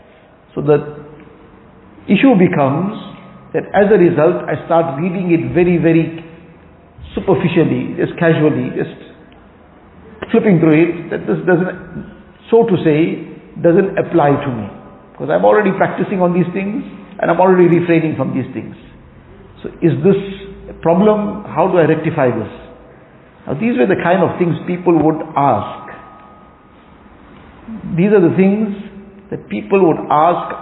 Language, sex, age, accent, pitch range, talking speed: English, male, 50-69, Indian, 155-185 Hz, 145 wpm